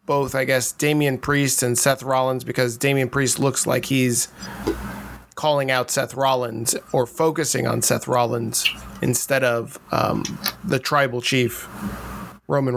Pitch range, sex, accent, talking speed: 130-165 Hz, male, American, 140 wpm